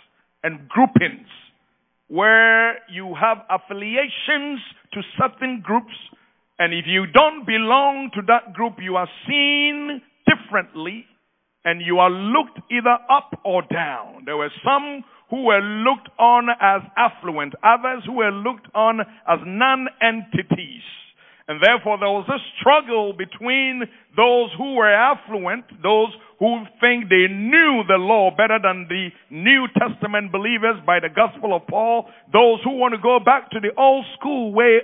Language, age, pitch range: English, 50-69, 200-255 Hz